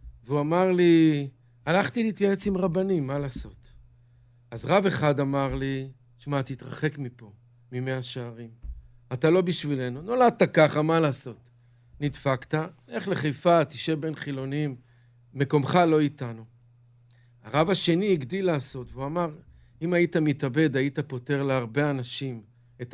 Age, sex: 50-69, male